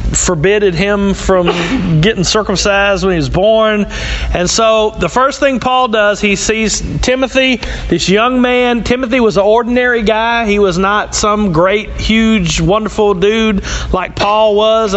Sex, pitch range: male, 185-220 Hz